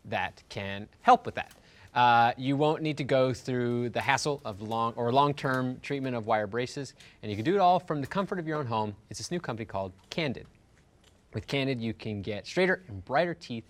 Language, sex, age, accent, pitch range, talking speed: English, male, 30-49, American, 110-165 Hz, 220 wpm